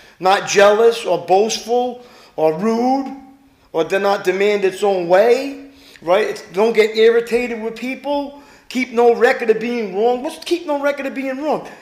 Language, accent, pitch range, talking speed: English, American, 210-290 Hz, 160 wpm